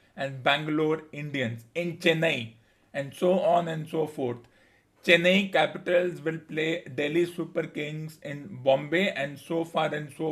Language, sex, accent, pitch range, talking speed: English, male, Indian, 145-170 Hz, 145 wpm